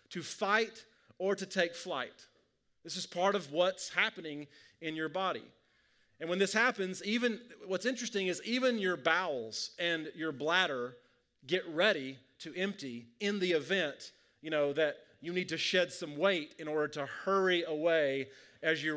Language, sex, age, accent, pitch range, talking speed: English, male, 30-49, American, 160-195 Hz, 165 wpm